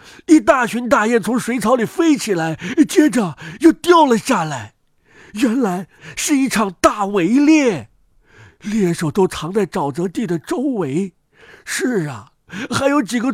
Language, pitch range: Chinese, 160-245 Hz